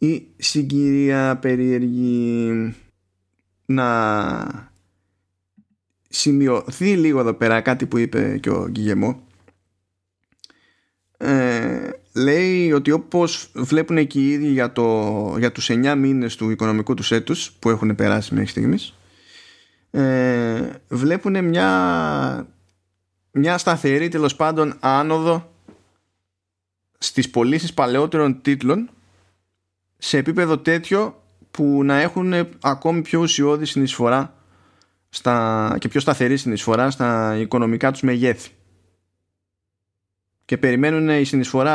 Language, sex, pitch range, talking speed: Greek, male, 100-145 Hz, 100 wpm